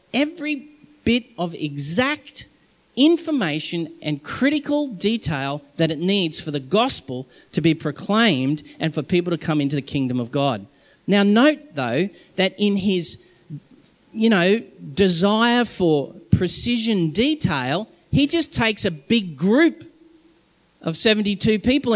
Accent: Australian